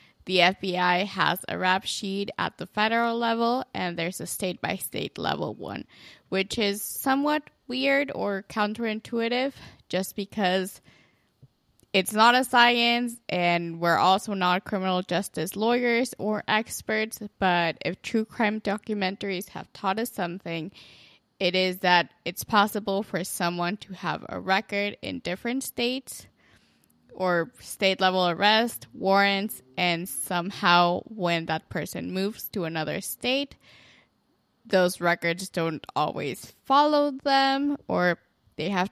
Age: 10-29